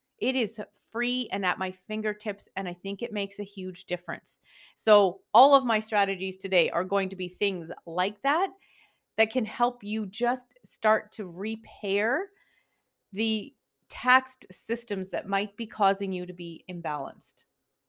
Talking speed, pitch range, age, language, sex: 160 wpm, 195-250 Hz, 30-49, English, female